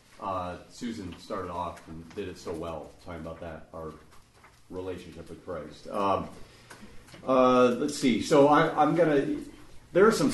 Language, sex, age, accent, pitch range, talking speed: English, male, 40-59, American, 115-165 Hz, 155 wpm